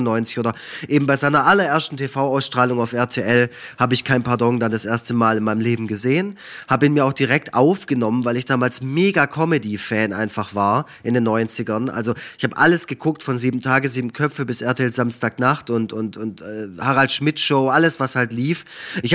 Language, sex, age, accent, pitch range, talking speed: German, male, 20-39, German, 120-140 Hz, 190 wpm